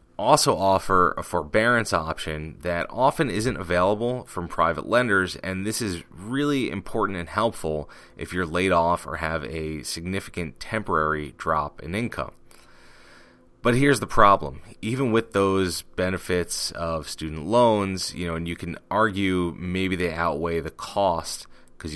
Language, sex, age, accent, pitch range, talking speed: English, male, 30-49, American, 80-100 Hz, 150 wpm